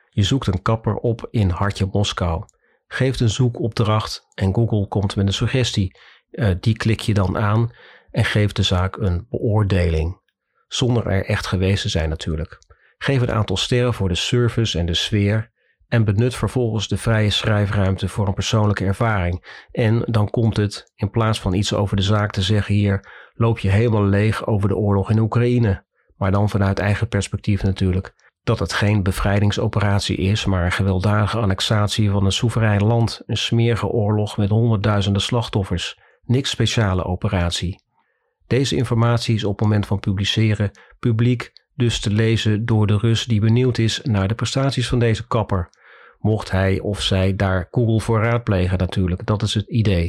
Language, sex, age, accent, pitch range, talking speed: Dutch, male, 40-59, Dutch, 100-115 Hz, 170 wpm